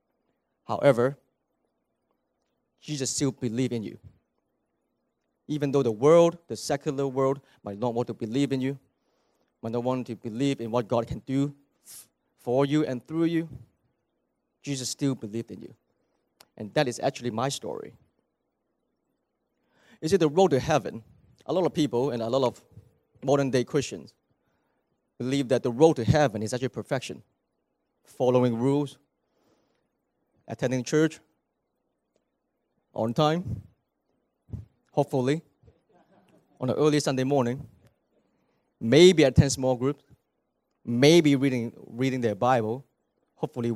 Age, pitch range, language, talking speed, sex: 30-49, 120-150 Hz, English, 130 wpm, male